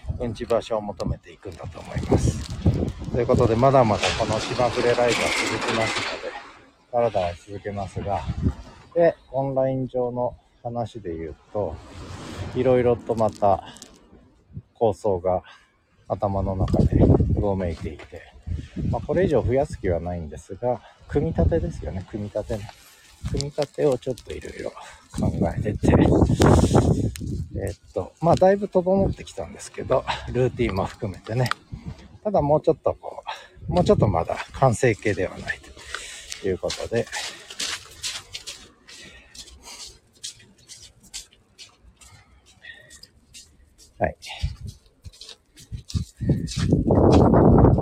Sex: male